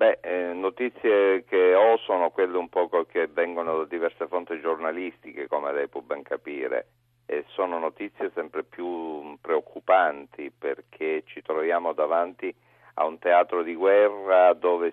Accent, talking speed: native, 145 wpm